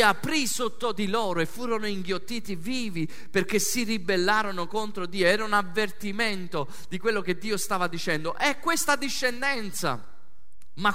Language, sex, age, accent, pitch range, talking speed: Italian, male, 30-49, native, 205-260 Hz, 145 wpm